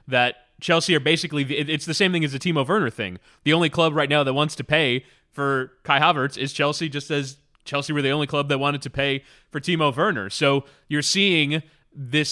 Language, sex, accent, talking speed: English, male, American, 220 wpm